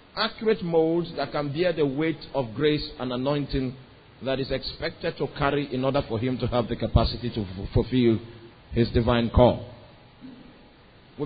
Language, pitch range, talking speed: English, 140-175 Hz, 160 wpm